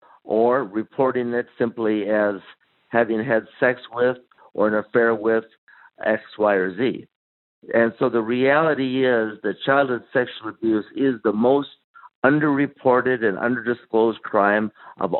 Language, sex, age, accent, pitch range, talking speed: English, male, 60-79, American, 105-130 Hz, 140 wpm